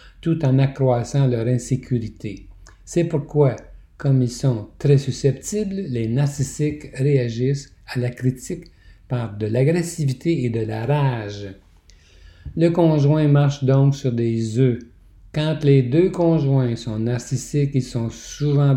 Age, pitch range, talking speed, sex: 60-79, 115-140 Hz, 130 wpm, male